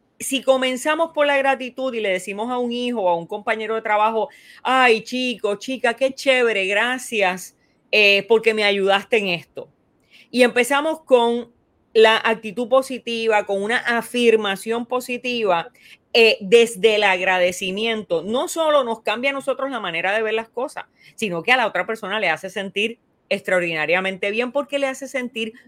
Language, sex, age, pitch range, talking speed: Spanish, female, 30-49, 200-250 Hz, 165 wpm